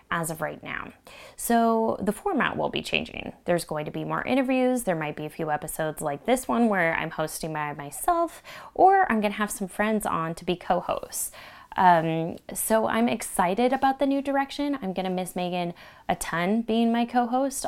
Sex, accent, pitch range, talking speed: female, American, 165-225 Hz, 190 wpm